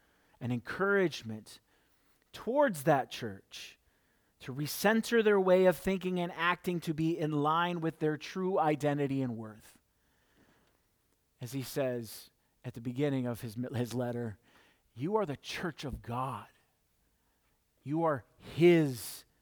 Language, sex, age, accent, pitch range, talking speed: English, male, 40-59, American, 140-190 Hz, 130 wpm